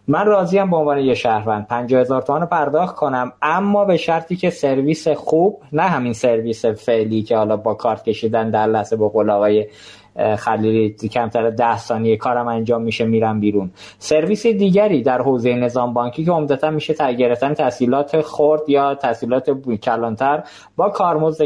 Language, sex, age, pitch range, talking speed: Persian, male, 20-39, 120-160 Hz, 160 wpm